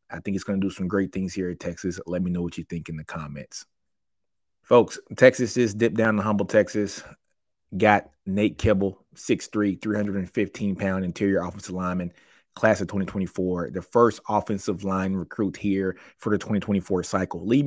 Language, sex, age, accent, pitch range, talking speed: English, male, 30-49, American, 90-100 Hz, 175 wpm